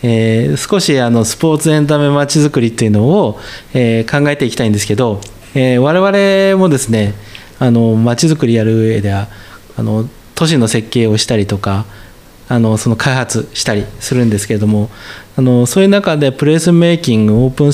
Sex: male